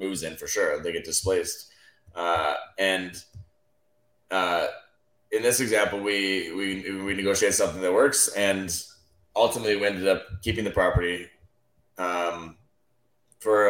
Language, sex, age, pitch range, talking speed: English, male, 30-49, 90-120 Hz, 130 wpm